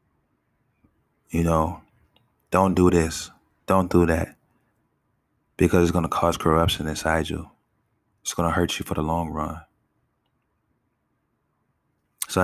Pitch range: 80-85 Hz